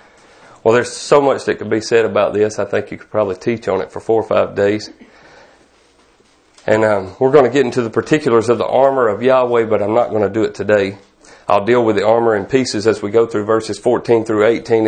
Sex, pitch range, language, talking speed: male, 105-130 Hz, English, 240 wpm